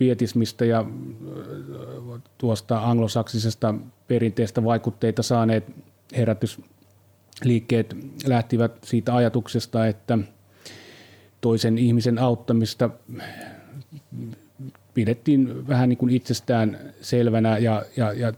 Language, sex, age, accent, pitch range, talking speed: Finnish, male, 30-49, native, 110-125 Hz, 80 wpm